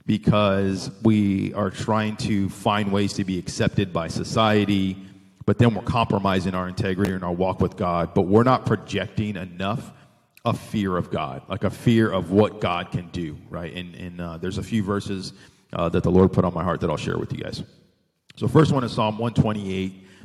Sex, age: male, 40-59